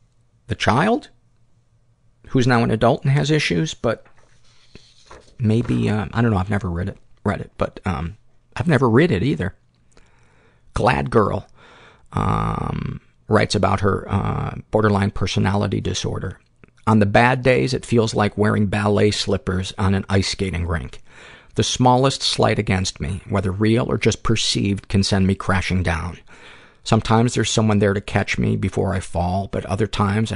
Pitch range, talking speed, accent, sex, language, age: 95-120 Hz, 160 wpm, American, male, English, 50-69